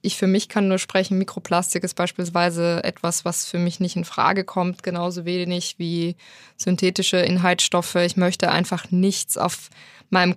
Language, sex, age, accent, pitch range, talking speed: German, female, 20-39, German, 180-200 Hz, 160 wpm